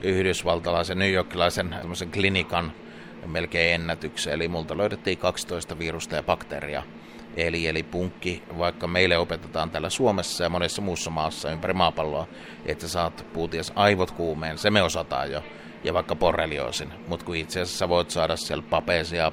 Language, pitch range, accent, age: Finnish, 80-95 Hz, native, 30-49